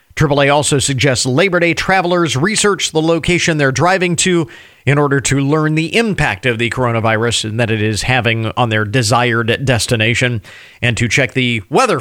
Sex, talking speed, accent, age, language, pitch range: male, 175 wpm, American, 40-59, English, 115-175 Hz